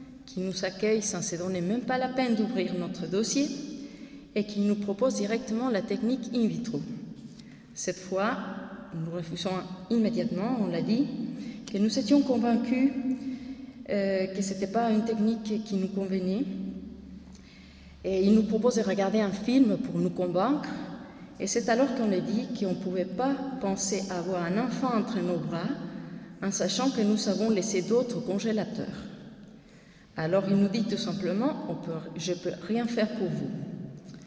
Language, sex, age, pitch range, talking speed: French, female, 30-49, 185-235 Hz, 170 wpm